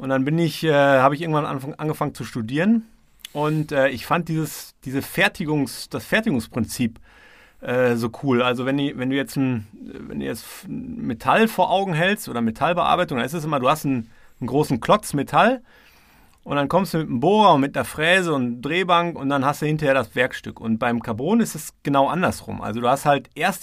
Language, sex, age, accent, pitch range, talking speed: German, male, 40-59, German, 120-160 Hz, 205 wpm